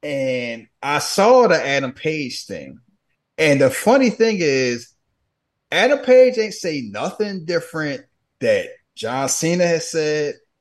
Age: 30-49